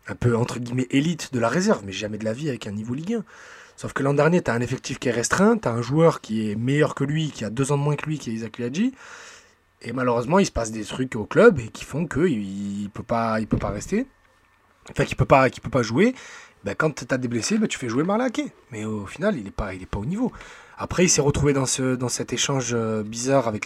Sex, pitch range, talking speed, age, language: male, 110-145 Hz, 270 wpm, 20-39, French